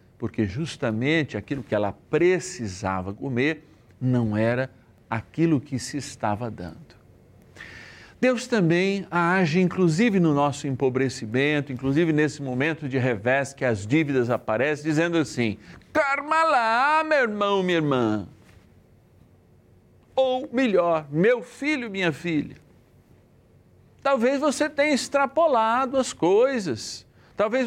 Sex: male